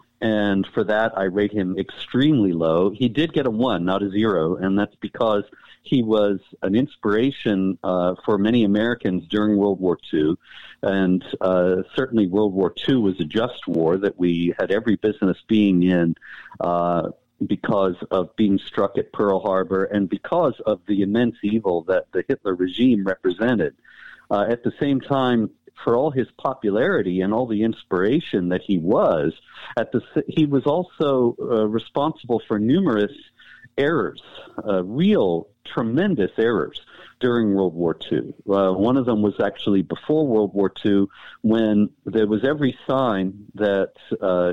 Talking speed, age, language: 160 wpm, 50-69, English